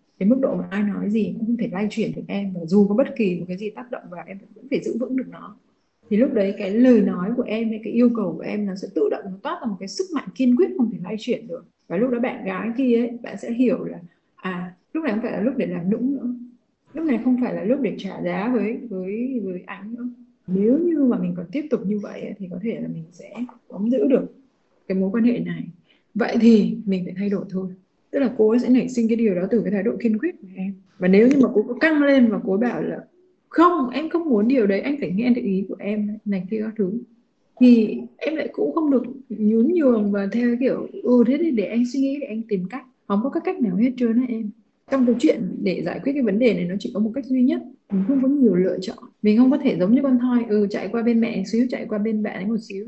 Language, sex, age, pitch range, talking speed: Vietnamese, female, 20-39, 205-250 Hz, 290 wpm